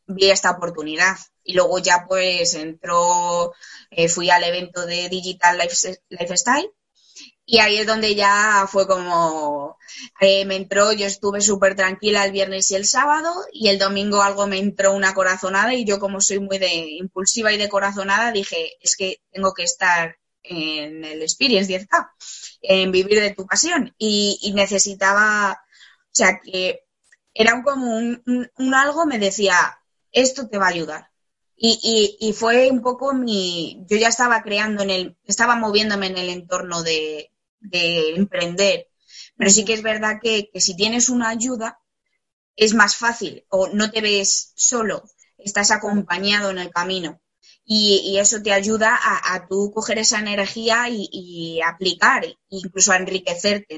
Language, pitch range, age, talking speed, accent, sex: Spanish, 185-220 Hz, 20-39, 165 wpm, Spanish, female